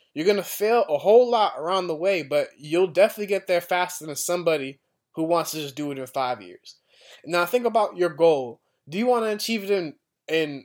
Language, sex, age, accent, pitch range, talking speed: English, male, 20-39, American, 155-200 Hz, 225 wpm